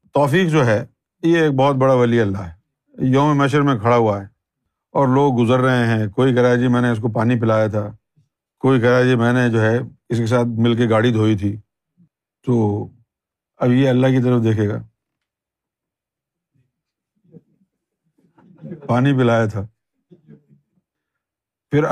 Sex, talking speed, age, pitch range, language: male, 160 wpm, 50-69, 125-170 Hz, Urdu